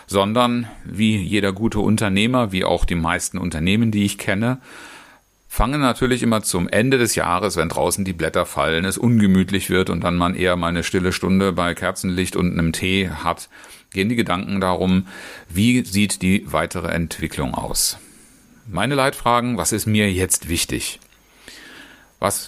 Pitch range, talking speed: 90-115 Hz, 160 wpm